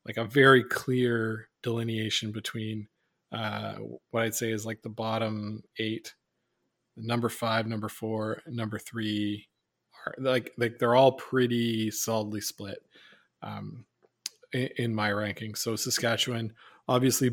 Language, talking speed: English, 130 wpm